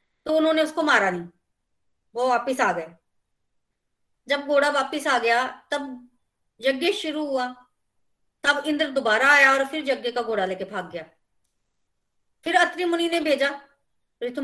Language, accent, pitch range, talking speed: Hindi, native, 245-315 Hz, 150 wpm